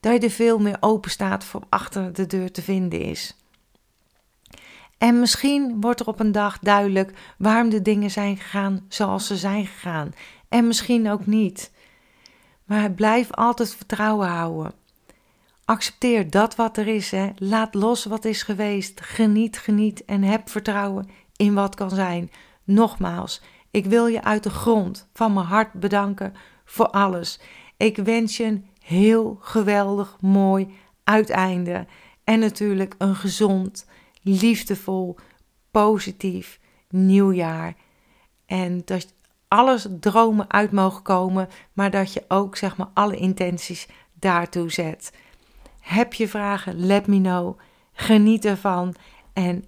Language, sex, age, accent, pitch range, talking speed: Dutch, female, 40-59, Dutch, 190-220 Hz, 140 wpm